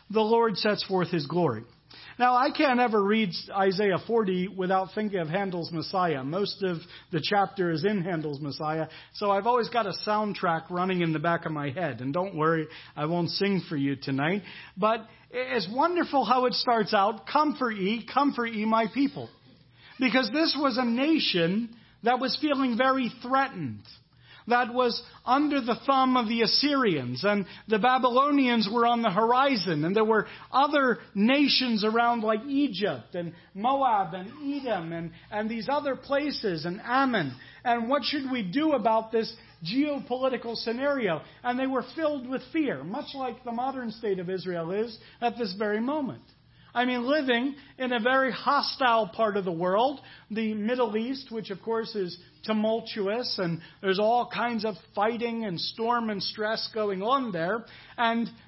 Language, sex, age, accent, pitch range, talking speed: English, male, 40-59, American, 190-255 Hz, 170 wpm